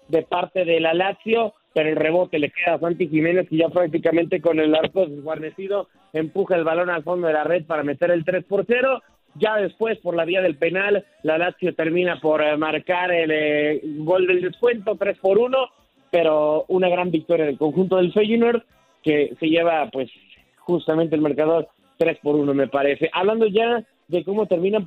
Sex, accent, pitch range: male, Mexican, 160-190 Hz